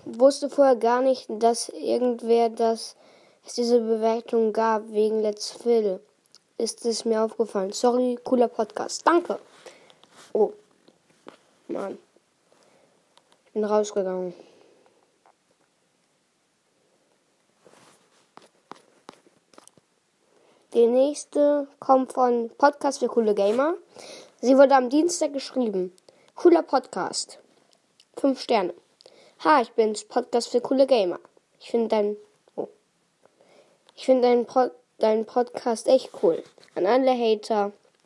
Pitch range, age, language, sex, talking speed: 220-280 Hz, 20-39, German, female, 100 wpm